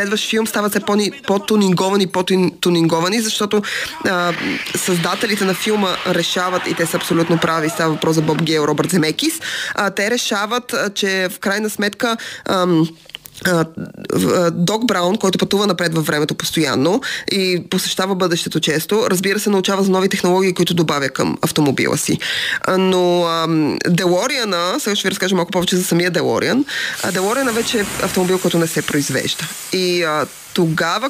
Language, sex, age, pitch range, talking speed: Bulgarian, female, 20-39, 175-215 Hz, 160 wpm